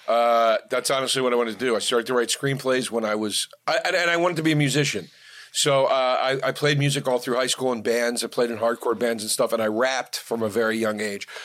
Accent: American